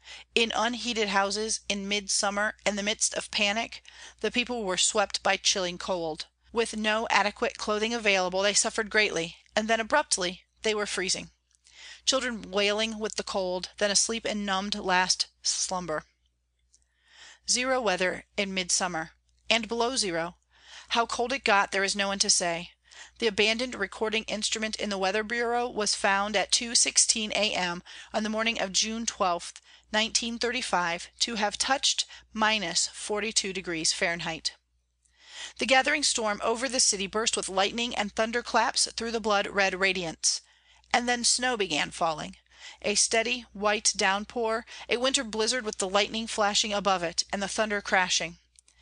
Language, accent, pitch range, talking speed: English, American, 190-230 Hz, 155 wpm